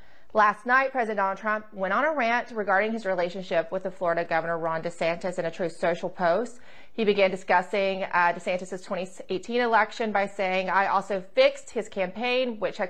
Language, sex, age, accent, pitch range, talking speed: English, female, 30-49, American, 185-230 Hz, 180 wpm